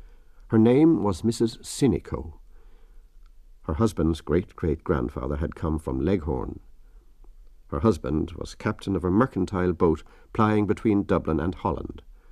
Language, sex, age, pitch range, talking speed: English, male, 60-79, 75-105 Hz, 120 wpm